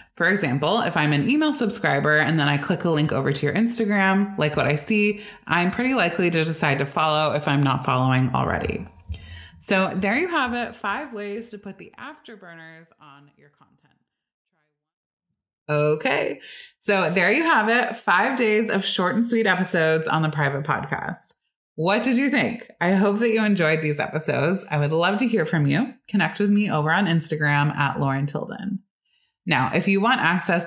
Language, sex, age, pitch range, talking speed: English, female, 20-39, 150-215 Hz, 190 wpm